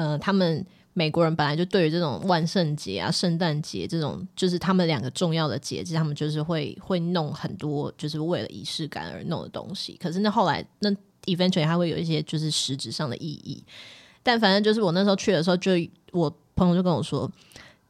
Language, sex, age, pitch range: Chinese, female, 20-39, 150-190 Hz